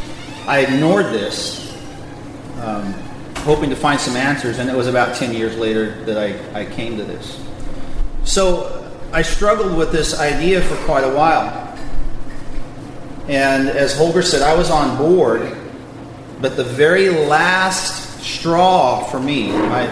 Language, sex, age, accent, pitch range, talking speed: English, male, 40-59, American, 135-170 Hz, 145 wpm